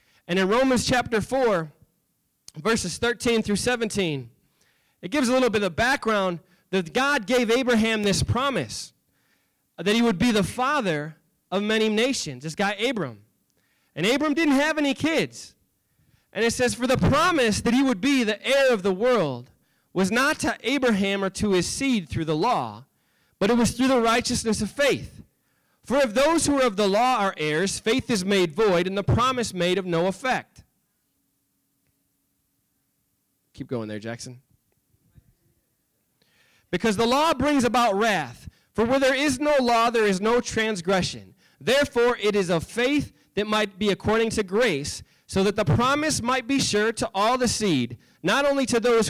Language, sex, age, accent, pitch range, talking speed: English, male, 20-39, American, 180-250 Hz, 170 wpm